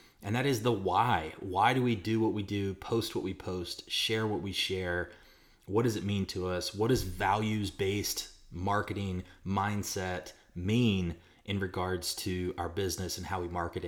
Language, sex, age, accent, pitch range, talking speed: English, male, 30-49, American, 90-105 Hz, 175 wpm